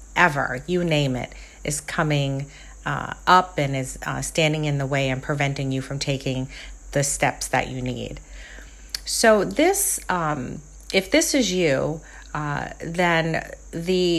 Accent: American